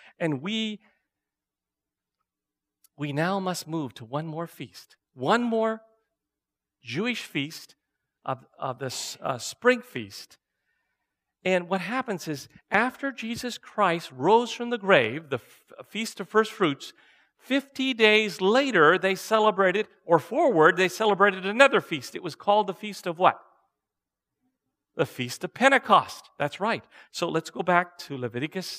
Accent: American